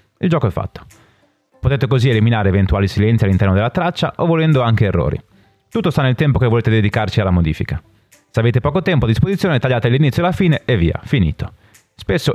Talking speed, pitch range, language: 195 wpm, 100-140 Hz, Italian